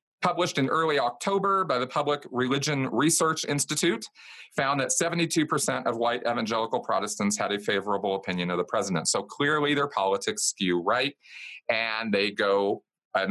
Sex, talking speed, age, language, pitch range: male, 155 wpm, 40-59, English, 115-160 Hz